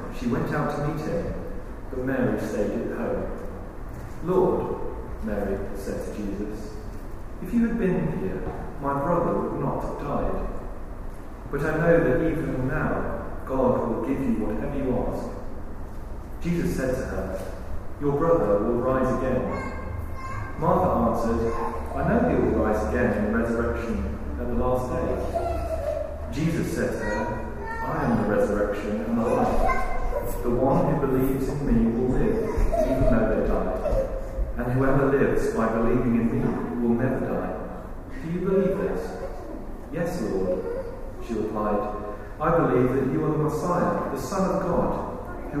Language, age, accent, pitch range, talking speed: English, 30-49, British, 105-155 Hz, 155 wpm